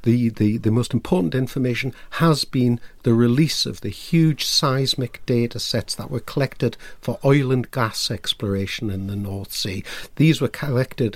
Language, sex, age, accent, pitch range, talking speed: English, male, 60-79, British, 110-140 Hz, 165 wpm